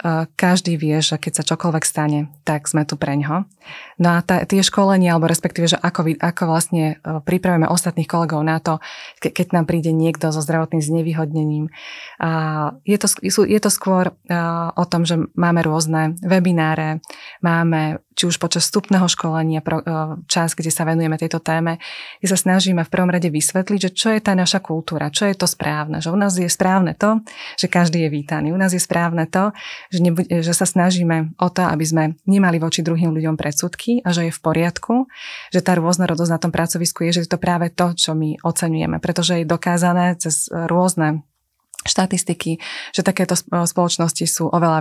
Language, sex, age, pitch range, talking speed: Slovak, female, 20-39, 160-180 Hz, 190 wpm